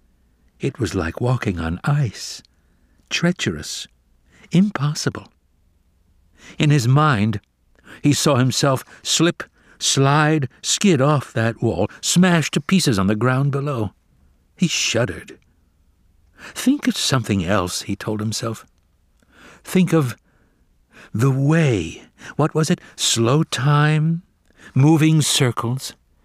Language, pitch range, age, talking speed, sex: English, 90-150 Hz, 60-79, 105 wpm, male